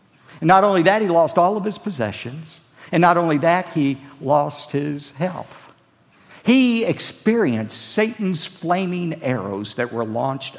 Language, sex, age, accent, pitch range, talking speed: English, male, 50-69, American, 115-180 Hz, 145 wpm